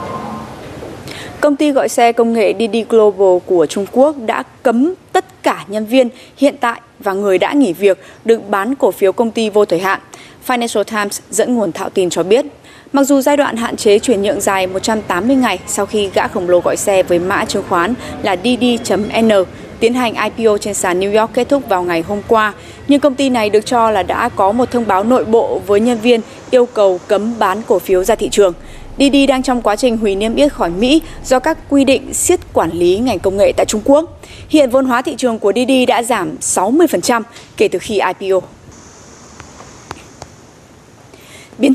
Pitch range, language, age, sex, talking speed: 195-260 Hz, Vietnamese, 20-39, female, 205 wpm